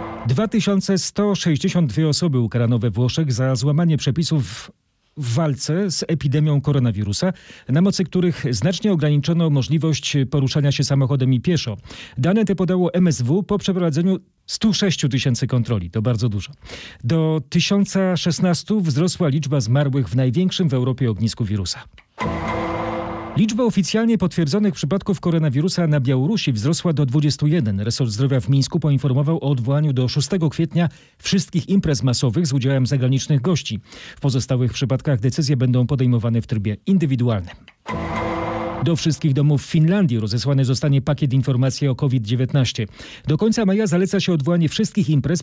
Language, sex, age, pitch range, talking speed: Polish, male, 40-59, 130-170 Hz, 135 wpm